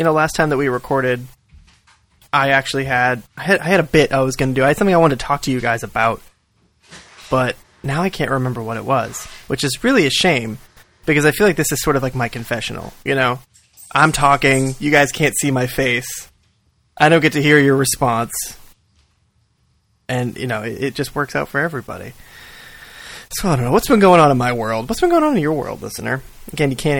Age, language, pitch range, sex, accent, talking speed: 20-39, English, 115-145 Hz, male, American, 235 wpm